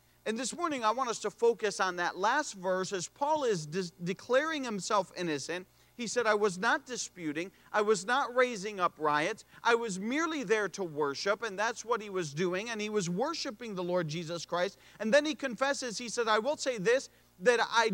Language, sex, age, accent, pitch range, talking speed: English, male, 40-59, American, 185-250 Hz, 205 wpm